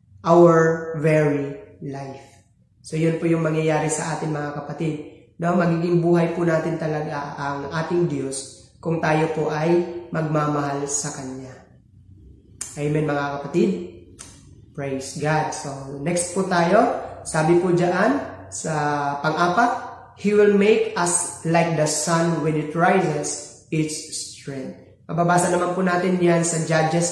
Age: 20-39